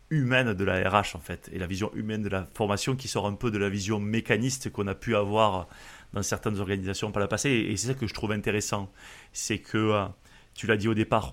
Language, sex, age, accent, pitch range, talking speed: French, male, 30-49, French, 100-120 Hz, 240 wpm